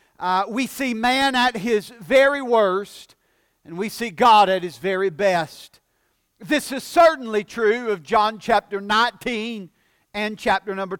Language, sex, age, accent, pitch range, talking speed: English, male, 50-69, American, 210-265 Hz, 145 wpm